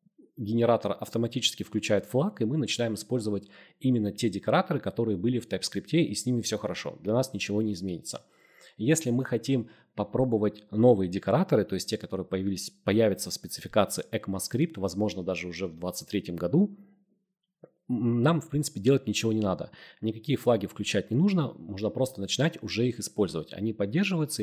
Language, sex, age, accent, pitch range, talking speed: Russian, male, 30-49, native, 105-130 Hz, 160 wpm